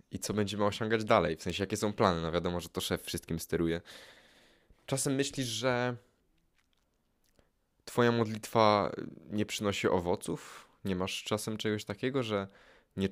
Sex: male